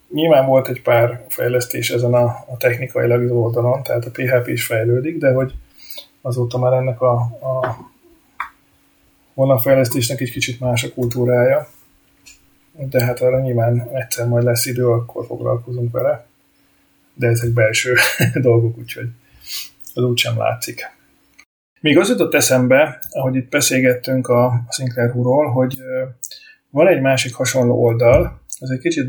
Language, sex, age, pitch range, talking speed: Hungarian, male, 30-49, 120-130 Hz, 140 wpm